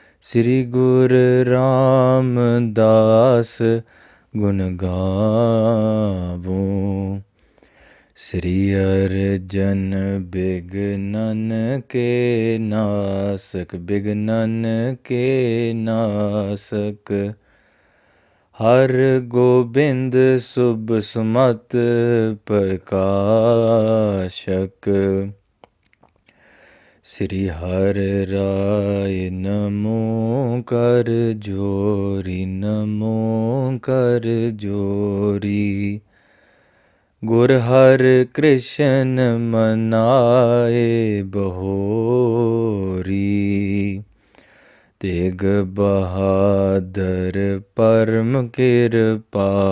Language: English